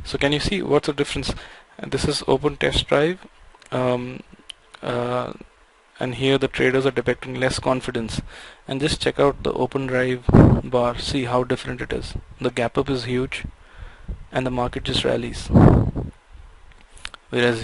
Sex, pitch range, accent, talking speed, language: male, 120-130 Hz, native, 155 wpm, Tamil